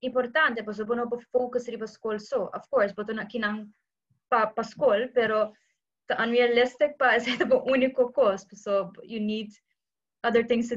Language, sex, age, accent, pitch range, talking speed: English, female, 20-39, Indian, 215-250 Hz, 130 wpm